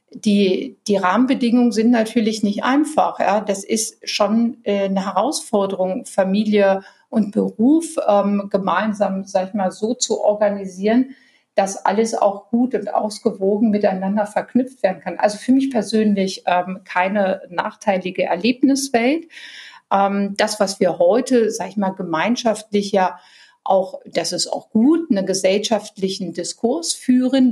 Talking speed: 135 wpm